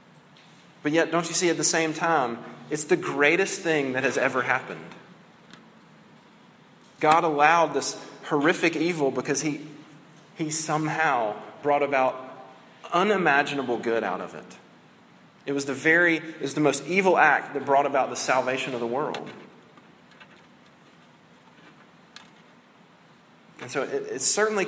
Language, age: English, 30-49